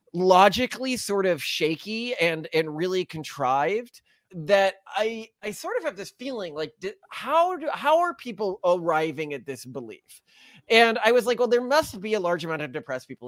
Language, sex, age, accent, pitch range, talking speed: English, male, 30-49, American, 155-215 Hz, 185 wpm